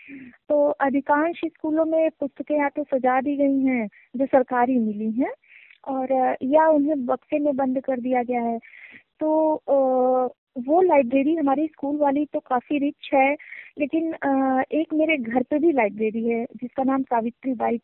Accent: native